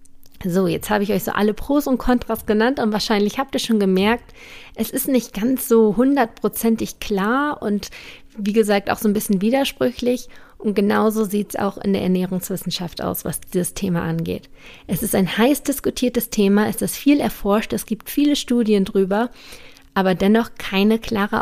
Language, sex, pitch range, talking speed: German, female, 190-235 Hz, 180 wpm